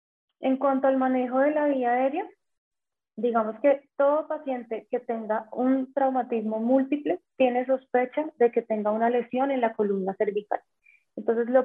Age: 20-39